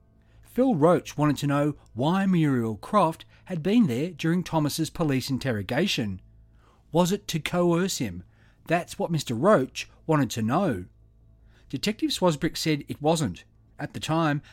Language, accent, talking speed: English, Australian, 145 wpm